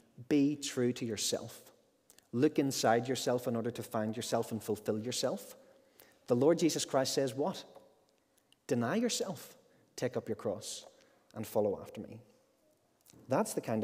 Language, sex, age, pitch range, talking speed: English, male, 30-49, 115-165 Hz, 145 wpm